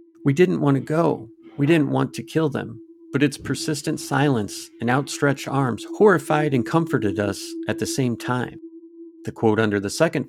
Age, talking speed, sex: 40-59, 180 wpm, male